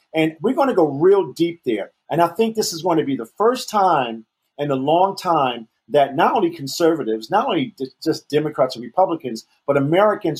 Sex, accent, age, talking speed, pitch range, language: male, American, 40-59, 190 wpm, 130-155 Hz, English